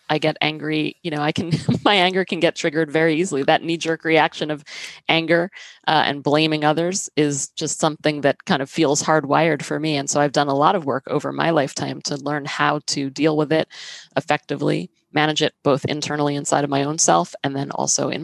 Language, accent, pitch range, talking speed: English, American, 145-160 Hz, 215 wpm